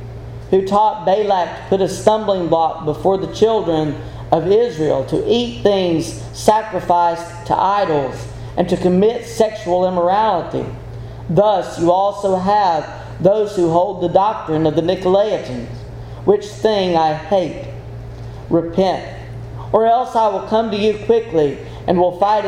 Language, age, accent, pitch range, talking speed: English, 40-59, American, 125-195 Hz, 140 wpm